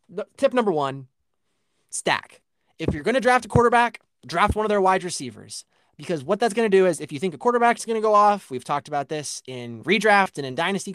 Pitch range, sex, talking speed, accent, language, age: 145-195 Hz, male, 235 wpm, American, English, 20-39